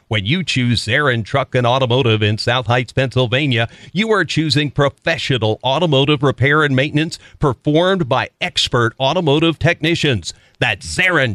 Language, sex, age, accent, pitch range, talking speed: English, male, 50-69, American, 120-155 Hz, 135 wpm